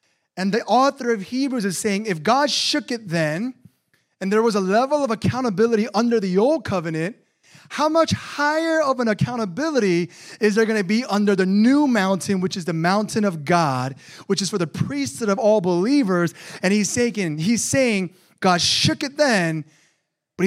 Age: 30-49